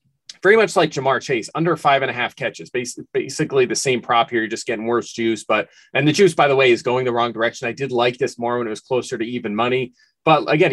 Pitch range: 115-145 Hz